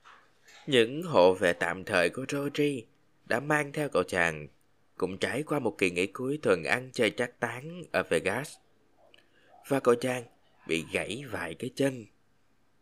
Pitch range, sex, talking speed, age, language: 105-150 Hz, male, 160 wpm, 20-39, Vietnamese